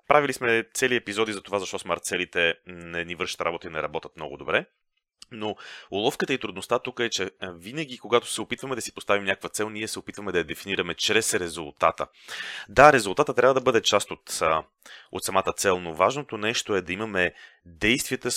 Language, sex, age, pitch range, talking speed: Bulgarian, male, 30-49, 95-125 Hz, 190 wpm